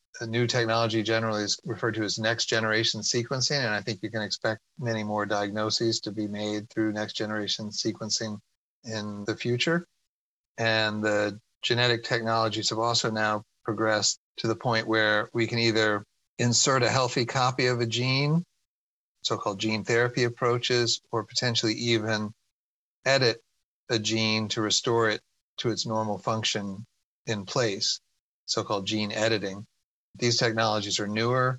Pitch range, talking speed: 110-120 Hz, 145 wpm